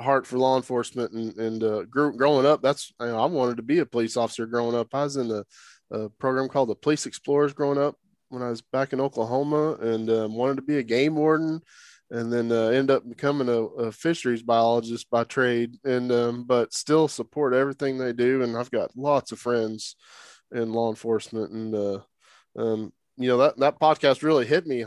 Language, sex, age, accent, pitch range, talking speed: English, male, 20-39, American, 115-145 Hz, 210 wpm